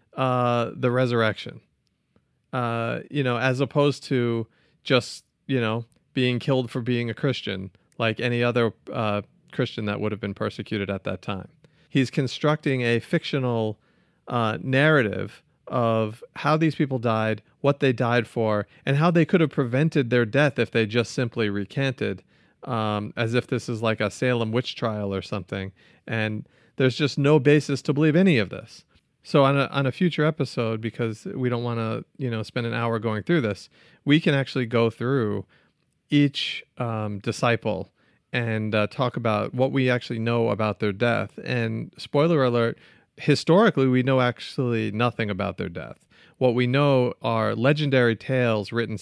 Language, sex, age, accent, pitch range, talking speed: English, male, 40-59, American, 110-135 Hz, 170 wpm